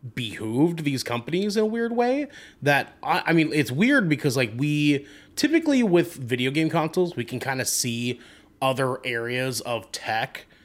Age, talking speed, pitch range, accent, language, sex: 30-49, 170 wpm, 115-160 Hz, American, English, male